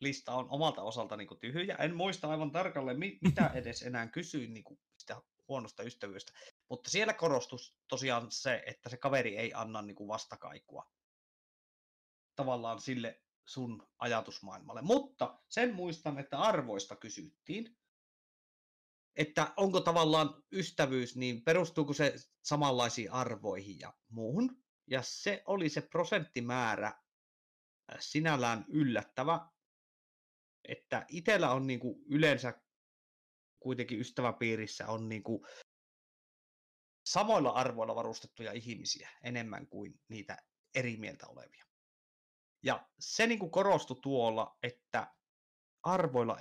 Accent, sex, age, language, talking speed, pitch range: native, male, 30-49, Finnish, 115 wpm, 115-165 Hz